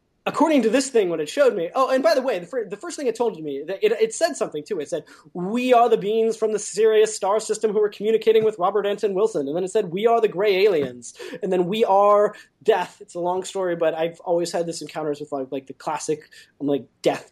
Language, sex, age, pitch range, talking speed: English, male, 20-39, 160-230 Hz, 260 wpm